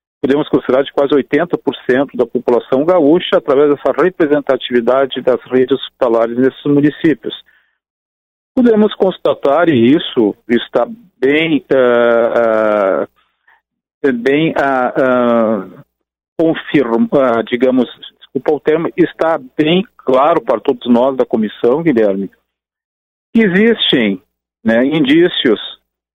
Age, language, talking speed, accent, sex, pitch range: 50-69, Portuguese, 100 wpm, Brazilian, male, 125-195 Hz